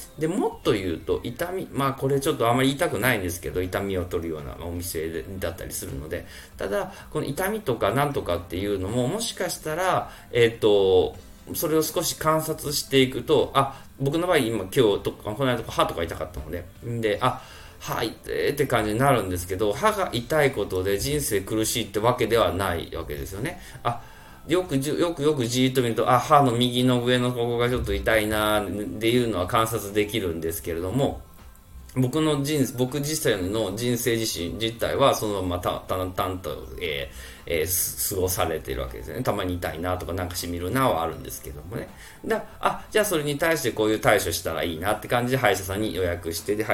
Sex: male